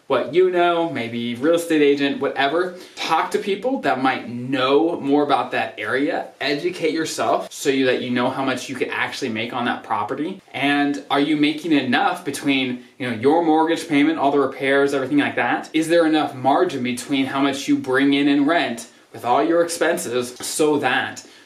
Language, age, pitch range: English, 20-39, 130-160 Hz